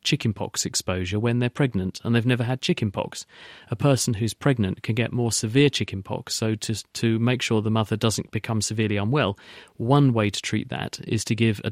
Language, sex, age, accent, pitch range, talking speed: English, male, 40-59, British, 105-125 Hz, 200 wpm